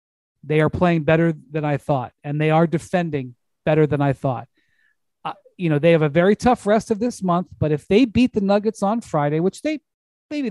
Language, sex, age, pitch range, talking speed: English, male, 40-59, 155-200 Hz, 215 wpm